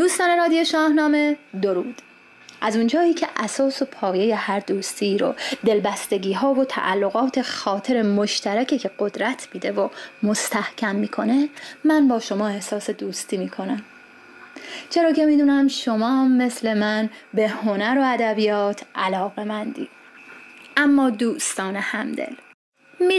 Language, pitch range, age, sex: Persian, 210-280 Hz, 20-39, female